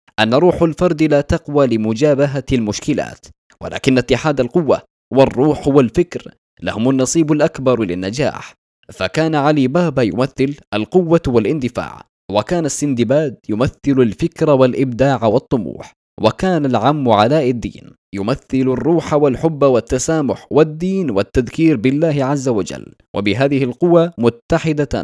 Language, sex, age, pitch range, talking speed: Arabic, male, 20-39, 120-155 Hz, 105 wpm